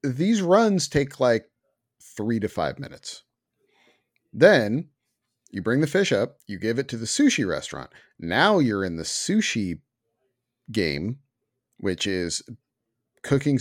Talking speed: 130 wpm